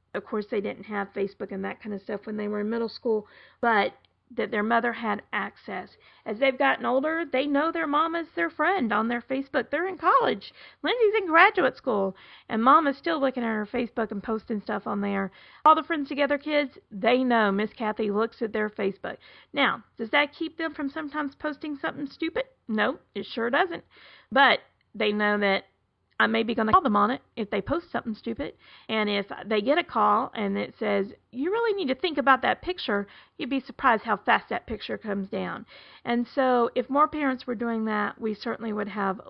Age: 40-59